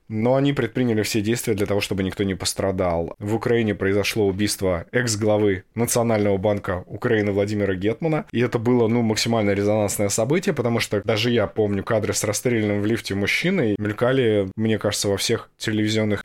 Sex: male